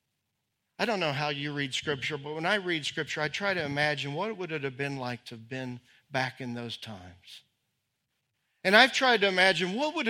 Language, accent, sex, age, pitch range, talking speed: English, American, male, 40-59, 135-200 Hz, 215 wpm